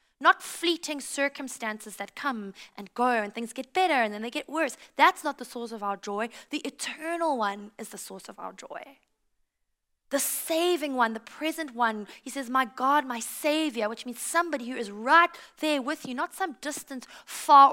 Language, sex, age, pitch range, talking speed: English, female, 20-39, 220-295 Hz, 195 wpm